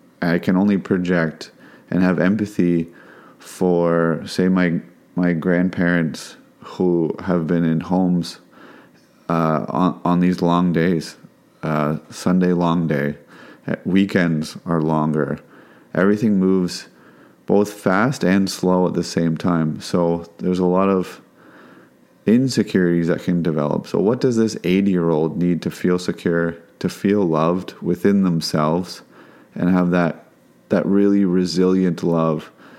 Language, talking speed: English, 130 wpm